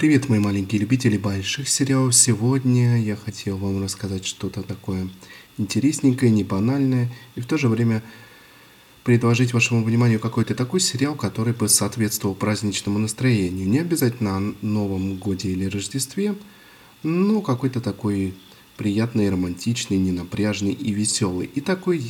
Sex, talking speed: male, 135 wpm